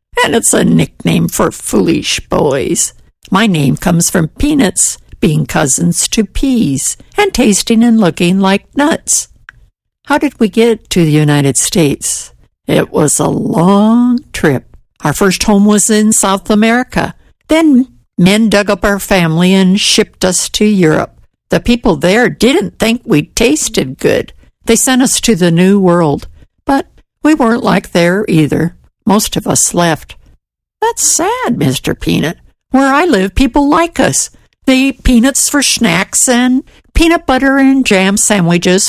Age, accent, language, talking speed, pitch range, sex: 60-79, American, English, 155 wpm, 175-245 Hz, female